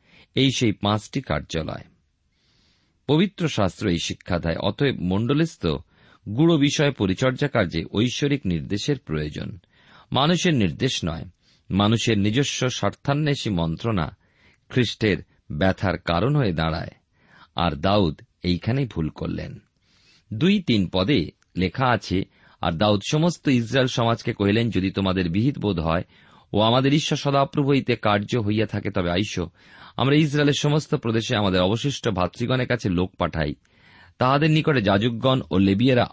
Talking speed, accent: 125 wpm, native